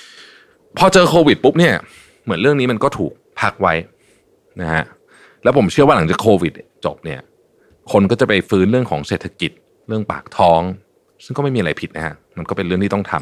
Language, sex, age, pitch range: Thai, male, 30-49, 85-130 Hz